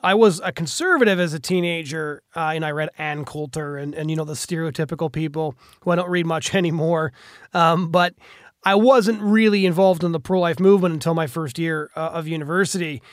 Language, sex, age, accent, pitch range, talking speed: English, male, 30-49, American, 165-195 Hz, 205 wpm